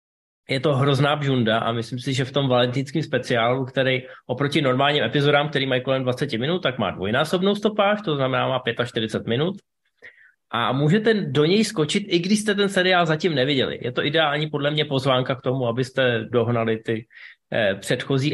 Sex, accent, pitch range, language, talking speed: male, native, 125-150 Hz, Czech, 175 wpm